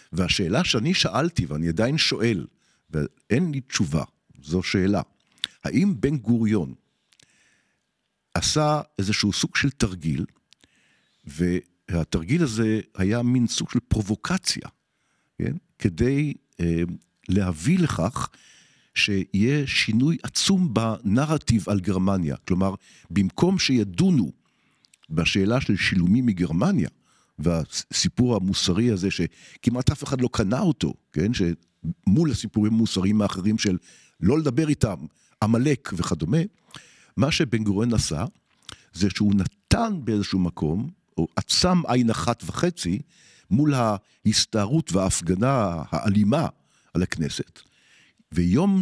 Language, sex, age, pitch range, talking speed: Hebrew, male, 50-69, 90-135 Hz, 105 wpm